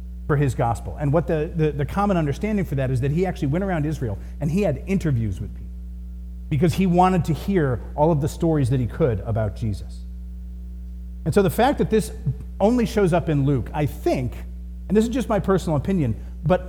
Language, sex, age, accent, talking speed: English, male, 40-59, American, 215 wpm